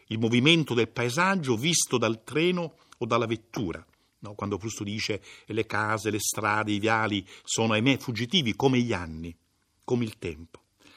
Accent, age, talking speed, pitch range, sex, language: native, 60-79, 160 wpm, 110-165 Hz, male, Italian